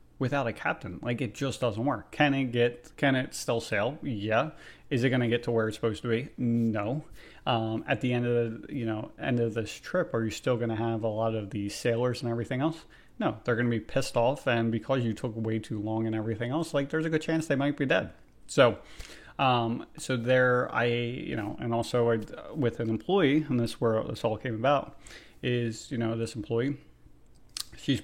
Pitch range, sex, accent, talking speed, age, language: 115-130 Hz, male, American, 225 wpm, 30-49, English